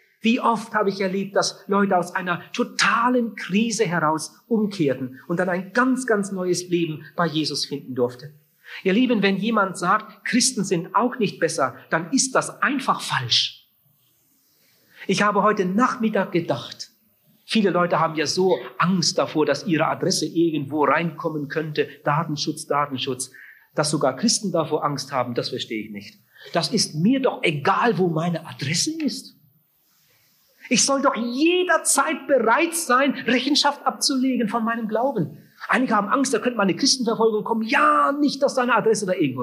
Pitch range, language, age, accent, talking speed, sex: 160-240 Hz, German, 40-59, German, 160 wpm, male